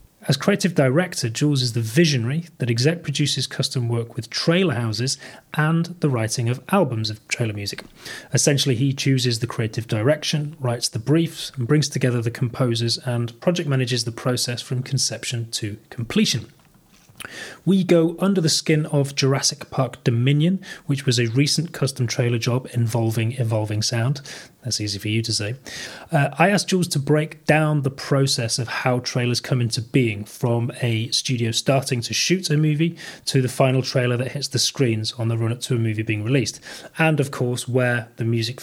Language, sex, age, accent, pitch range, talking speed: English, male, 30-49, British, 120-150 Hz, 180 wpm